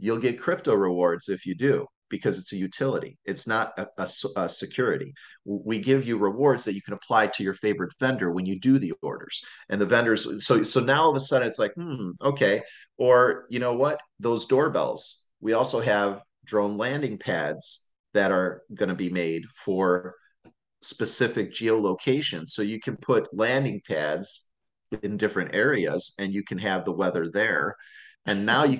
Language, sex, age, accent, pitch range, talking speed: English, male, 40-59, American, 105-155 Hz, 180 wpm